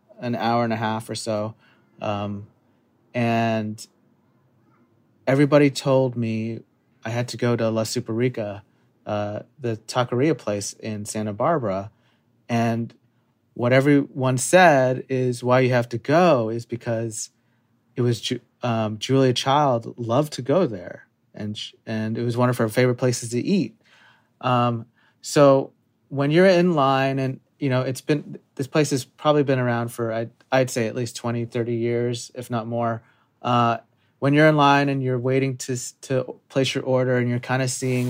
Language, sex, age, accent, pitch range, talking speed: English, male, 30-49, American, 115-130 Hz, 165 wpm